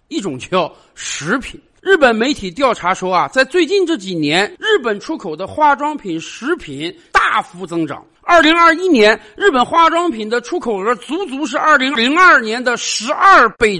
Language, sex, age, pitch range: Chinese, male, 50-69, 200-320 Hz